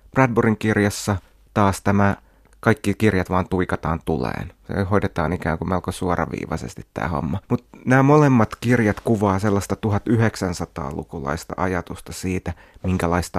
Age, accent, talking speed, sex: 30-49, native, 120 wpm, male